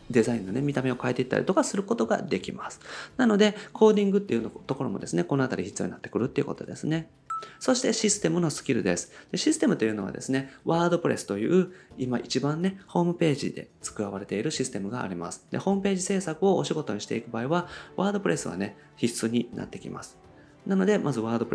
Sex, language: male, Japanese